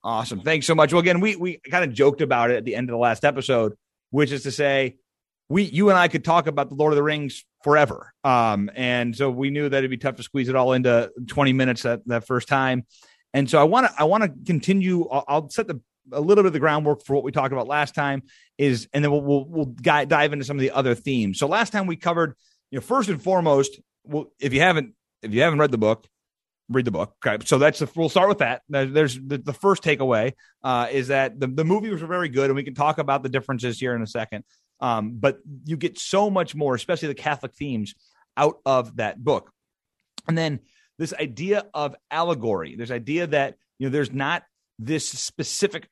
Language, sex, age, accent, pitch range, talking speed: English, male, 30-49, American, 130-165 Hz, 240 wpm